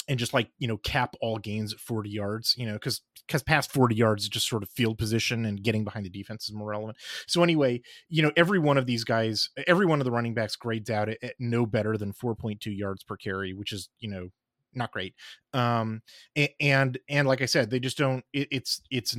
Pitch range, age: 110-135 Hz, 30-49